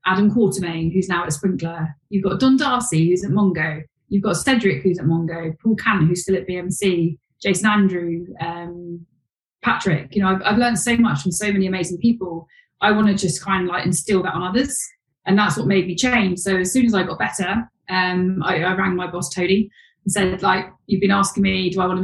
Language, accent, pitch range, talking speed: English, British, 170-200 Hz, 225 wpm